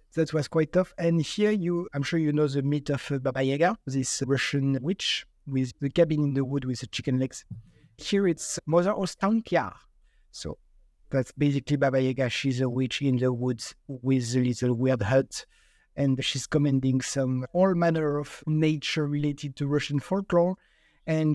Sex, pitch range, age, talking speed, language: male, 140-170 Hz, 50-69, 175 wpm, English